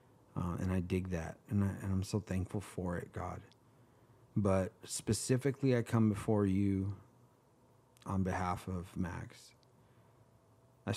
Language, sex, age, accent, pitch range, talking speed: English, male, 30-49, American, 95-115 Hz, 130 wpm